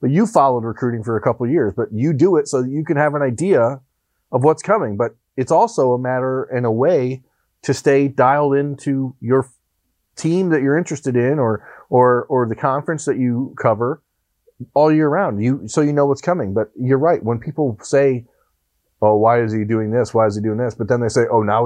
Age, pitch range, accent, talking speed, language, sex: 30-49, 110-140 Hz, American, 225 wpm, English, male